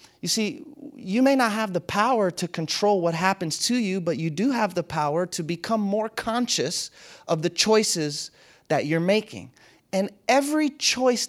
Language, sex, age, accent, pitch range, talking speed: English, male, 30-49, American, 175-230 Hz, 175 wpm